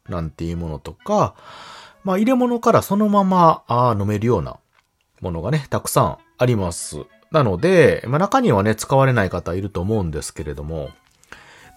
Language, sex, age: Japanese, male, 40-59